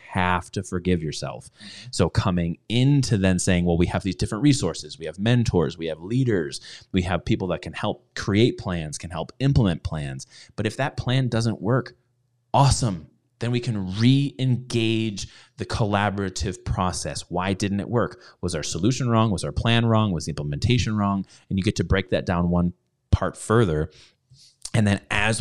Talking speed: 180 wpm